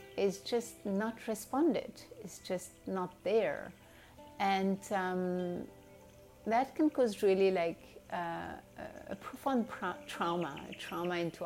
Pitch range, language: 175-230 Hz, English